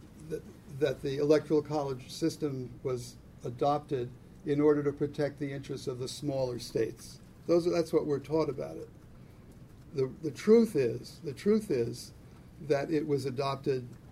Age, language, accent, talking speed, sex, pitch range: 60-79, English, American, 145 wpm, male, 130-155 Hz